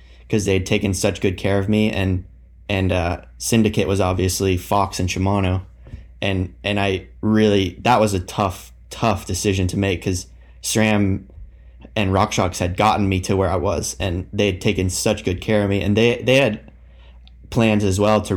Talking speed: 195 wpm